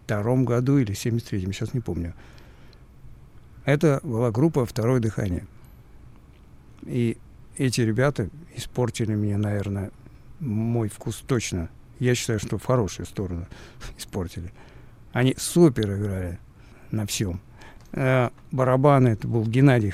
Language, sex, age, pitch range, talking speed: Russian, male, 60-79, 110-130 Hz, 110 wpm